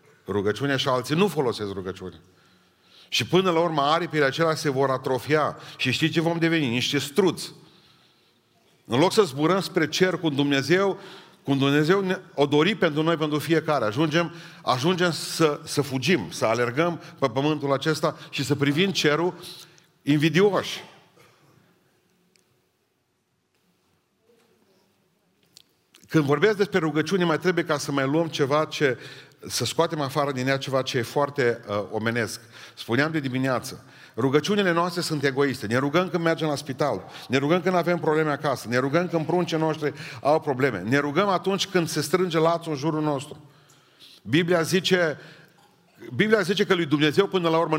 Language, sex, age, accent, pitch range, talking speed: Romanian, male, 40-59, native, 140-175 Hz, 155 wpm